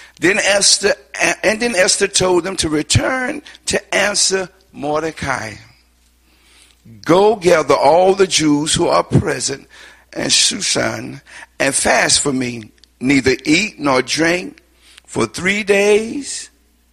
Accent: American